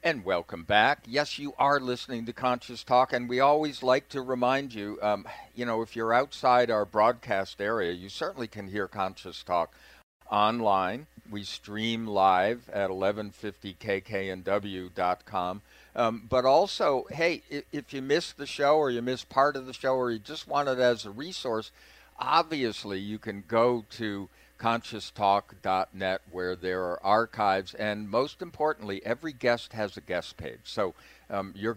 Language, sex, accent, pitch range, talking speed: English, male, American, 100-125 Hz, 155 wpm